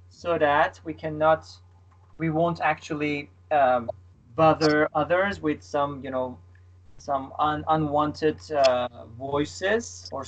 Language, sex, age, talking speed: English, male, 30-49, 110 wpm